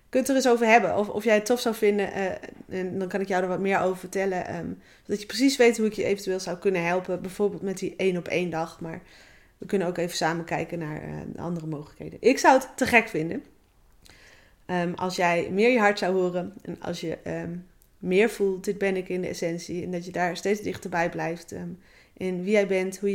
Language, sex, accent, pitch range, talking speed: Dutch, female, Dutch, 175-210 Hz, 245 wpm